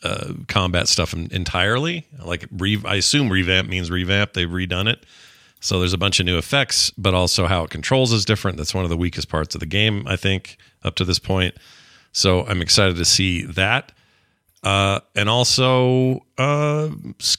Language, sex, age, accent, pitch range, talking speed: English, male, 40-59, American, 90-120 Hz, 180 wpm